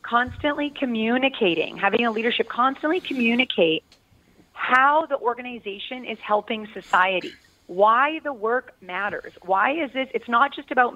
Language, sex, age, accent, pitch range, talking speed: English, female, 30-49, American, 195-245 Hz, 130 wpm